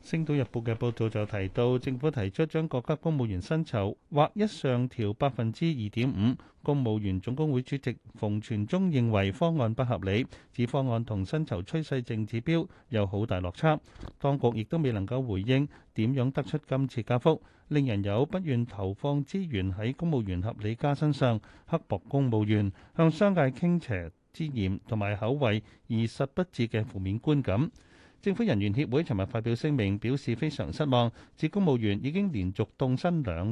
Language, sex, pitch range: Chinese, male, 105-145 Hz